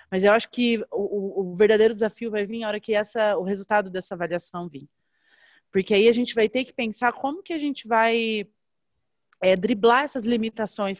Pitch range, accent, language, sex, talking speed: 195-235 Hz, Brazilian, Portuguese, female, 185 wpm